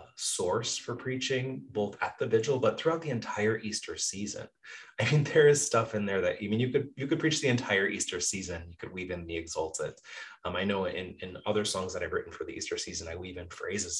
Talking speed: 240 wpm